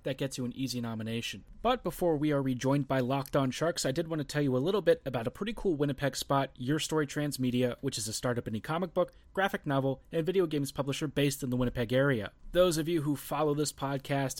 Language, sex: English, male